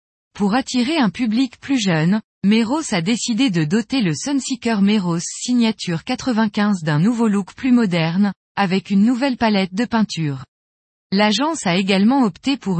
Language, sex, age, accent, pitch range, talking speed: French, female, 20-39, French, 175-250 Hz, 150 wpm